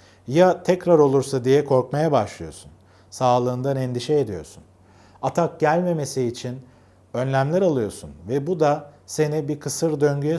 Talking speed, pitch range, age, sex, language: 120 wpm, 100-155 Hz, 40-59, male, Turkish